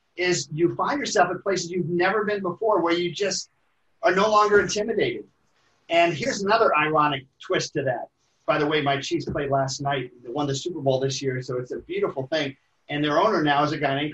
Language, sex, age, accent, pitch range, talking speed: English, male, 50-69, American, 140-180 Hz, 220 wpm